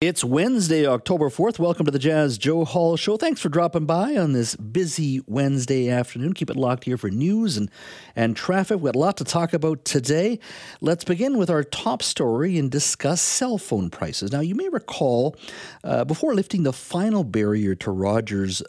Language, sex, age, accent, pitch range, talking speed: English, male, 50-69, American, 100-155 Hz, 195 wpm